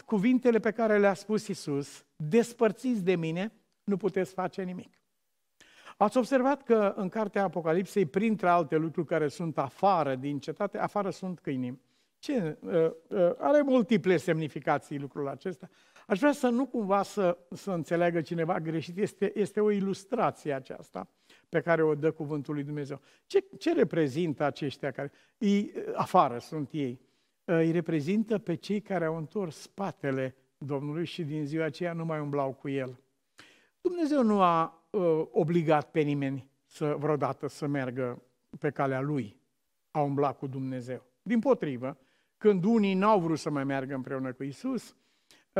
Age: 50-69